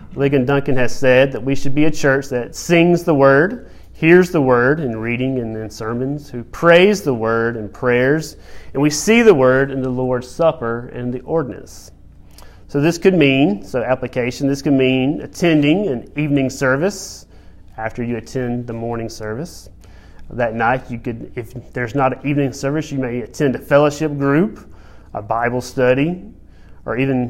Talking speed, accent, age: 175 wpm, American, 30-49